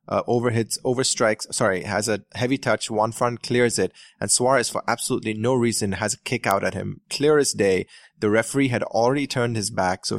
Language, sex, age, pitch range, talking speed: English, male, 20-39, 100-120 Hz, 220 wpm